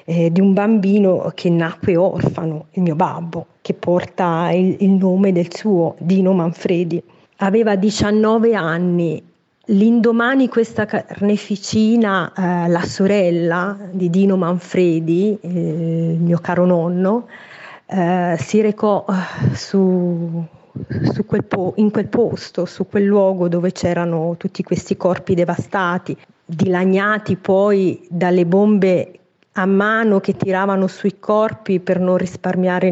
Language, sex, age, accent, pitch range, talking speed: Italian, female, 30-49, native, 175-195 Hz, 120 wpm